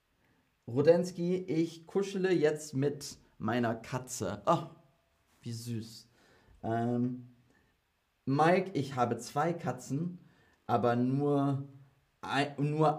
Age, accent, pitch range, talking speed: 30-49, German, 115-165 Hz, 90 wpm